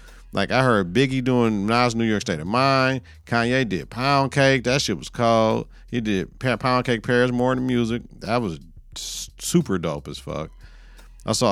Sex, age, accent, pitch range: male, 50-69, American, 95-125 Hz